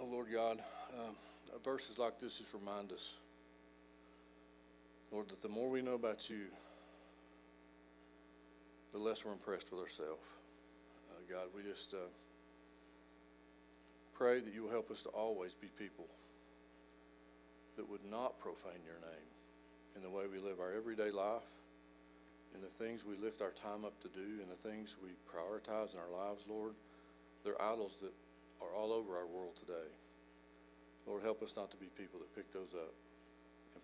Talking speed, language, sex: 165 wpm, English, male